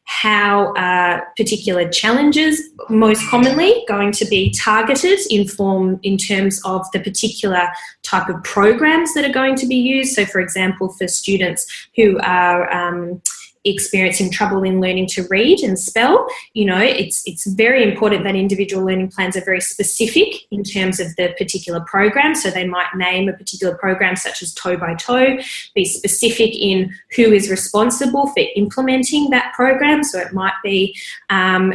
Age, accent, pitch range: 10-29, Australian, 185-225 Hz